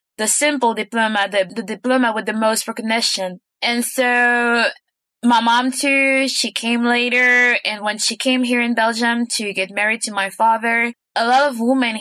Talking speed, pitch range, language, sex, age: 175 wpm, 205-245 Hz, English, female, 20-39